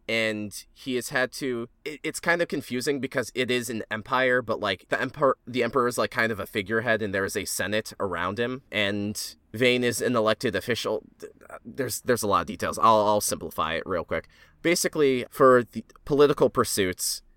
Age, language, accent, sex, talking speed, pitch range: 20-39, English, American, male, 195 wpm, 100-125 Hz